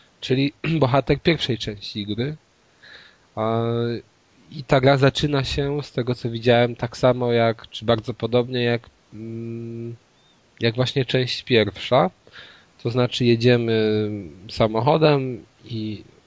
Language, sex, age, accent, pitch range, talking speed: Polish, male, 20-39, native, 110-130 Hz, 110 wpm